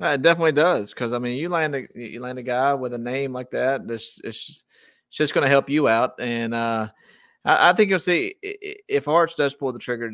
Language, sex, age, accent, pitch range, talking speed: English, male, 30-49, American, 115-135 Hz, 245 wpm